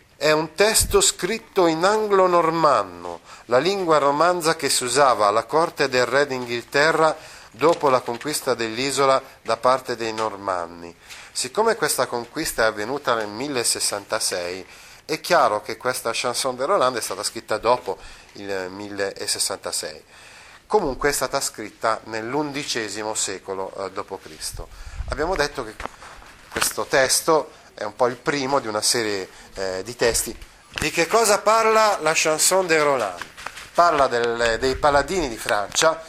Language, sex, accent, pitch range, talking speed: Italian, male, native, 110-155 Hz, 135 wpm